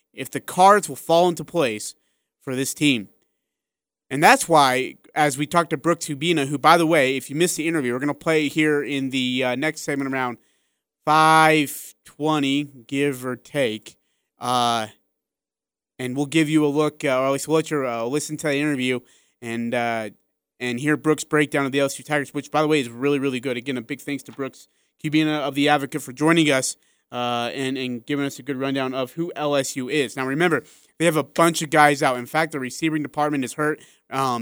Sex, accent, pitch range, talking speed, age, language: male, American, 130-155 Hz, 215 wpm, 30-49, English